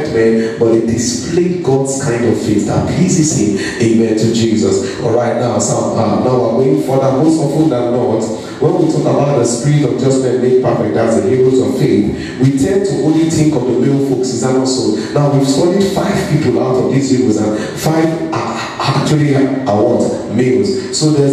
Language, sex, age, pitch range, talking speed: English, male, 40-59, 120-155 Hz, 210 wpm